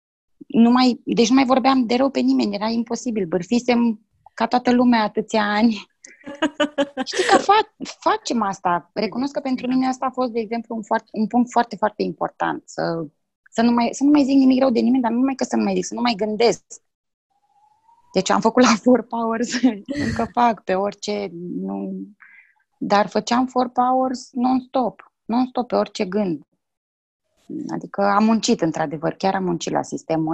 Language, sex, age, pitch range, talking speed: Romanian, female, 20-39, 210-270 Hz, 165 wpm